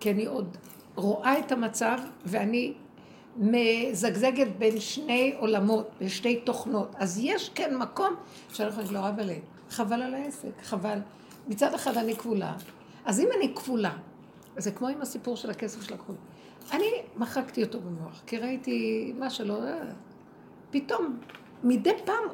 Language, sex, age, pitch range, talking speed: Hebrew, female, 60-79, 210-275 Hz, 145 wpm